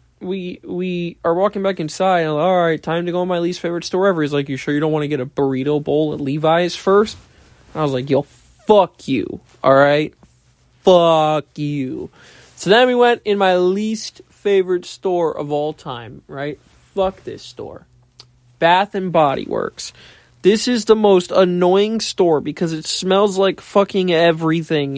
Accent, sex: American, male